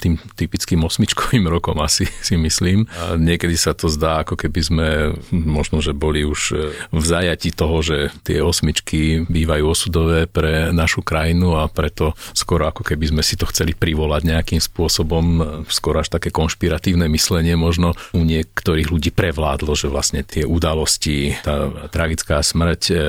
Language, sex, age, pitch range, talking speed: Slovak, male, 40-59, 80-90 Hz, 155 wpm